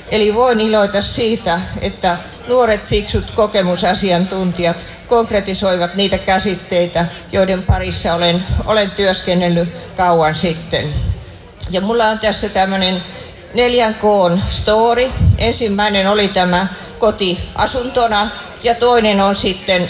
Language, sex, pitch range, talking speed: Finnish, female, 175-210 Hz, 105 wpm